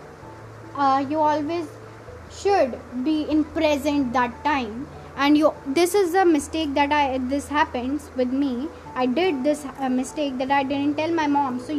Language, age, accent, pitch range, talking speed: English, 20-39, Indian, 265-330 Hz, 170 wpm